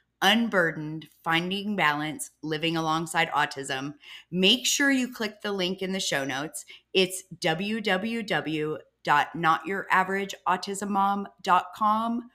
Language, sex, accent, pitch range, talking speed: English, female, American, 165-220 Hz, 90 wpm